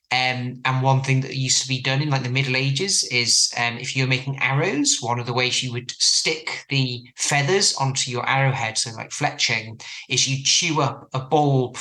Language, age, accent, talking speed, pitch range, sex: English, 30-49, British, 210 wpm, 120-135 Hz, male